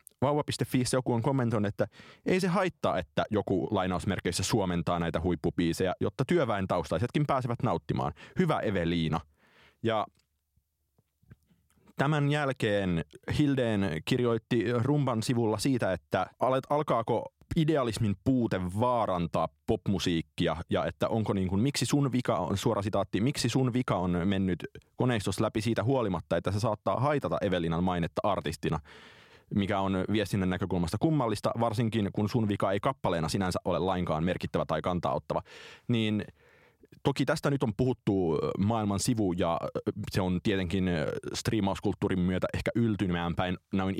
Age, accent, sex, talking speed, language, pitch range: 30-49, native, male, 135 wpm, Finnish, 90-120 Hz